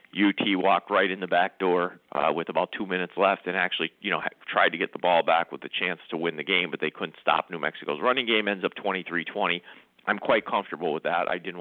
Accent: American